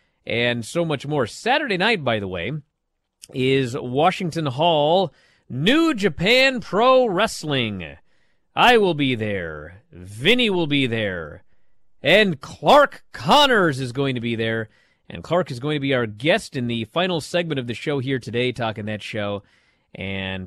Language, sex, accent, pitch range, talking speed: English, male, American, 115-170 Hz, 155 wpm